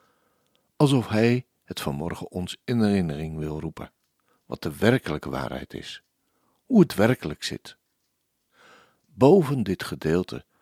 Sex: male